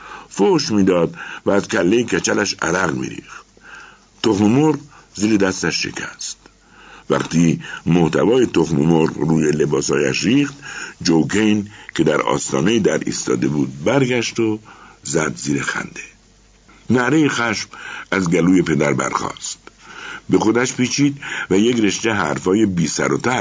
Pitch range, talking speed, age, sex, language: 80-125 Hz, 120 wpm, 60-79, male, Persian